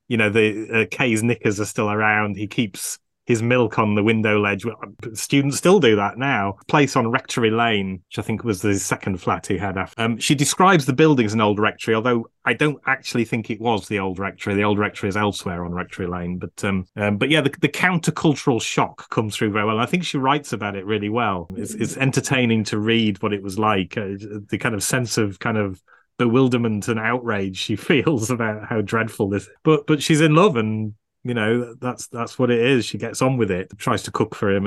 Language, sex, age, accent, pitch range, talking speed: English, male, 30-49, British, 100-125 Hz, 235 wpm